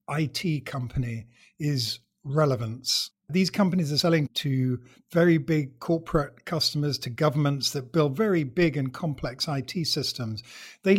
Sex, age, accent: male, 50-69, British